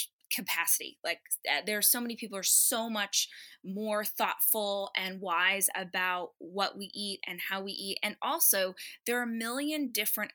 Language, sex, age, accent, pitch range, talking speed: English, female, 20-39, American, 185-230 Hz, 170 wpm